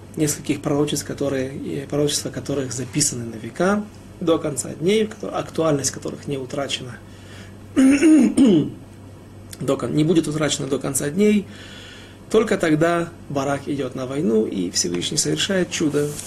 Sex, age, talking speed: male, 30-49, 120 wpm